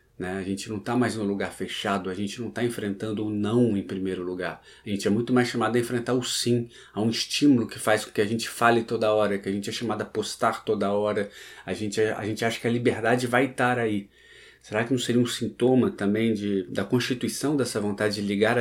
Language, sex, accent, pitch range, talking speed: Portuguese, male, Brazilian, 100-120 Hz, 240 wpm